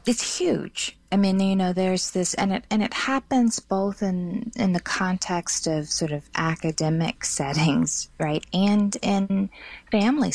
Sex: female